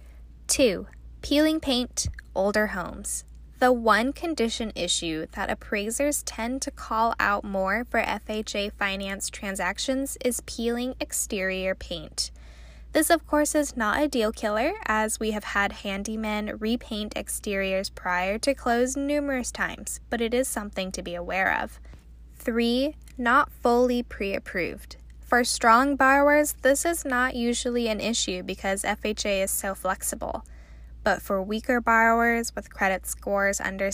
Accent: American